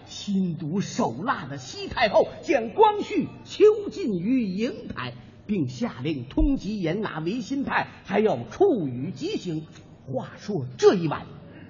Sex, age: male, 50-69